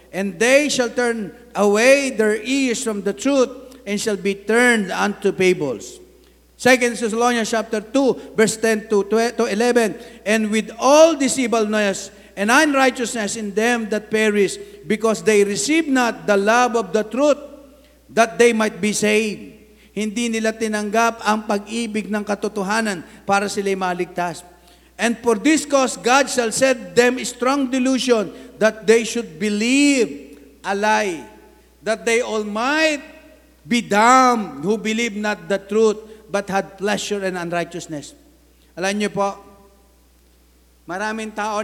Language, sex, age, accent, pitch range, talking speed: English, male, 50-69, Filipino, 180-235 Hz, 140 wpm